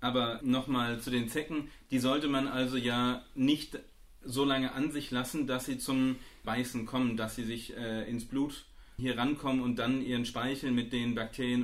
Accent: German